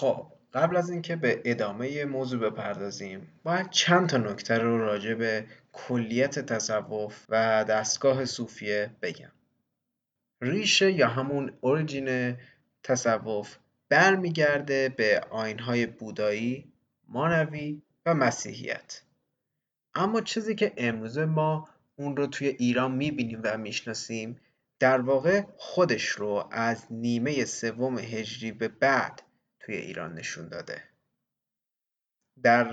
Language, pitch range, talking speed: Persian, 115-150 Hz, 110 wpm